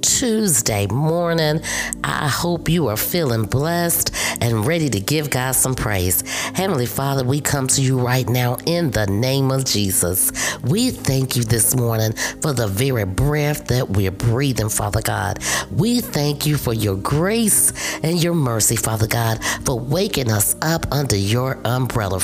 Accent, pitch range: American, 110-155 Hz